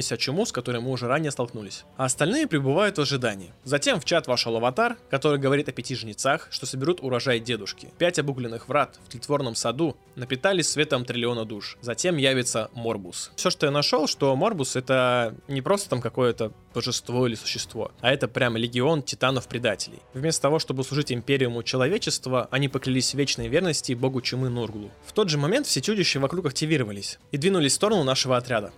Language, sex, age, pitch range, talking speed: Russian, male, 20-39, 120-155 Hz, 180 wpm